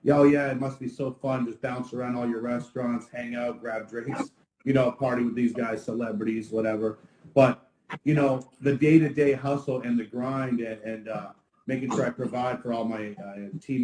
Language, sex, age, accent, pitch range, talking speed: English, male, 30-49, American, 110-130 Hz, 200 wpm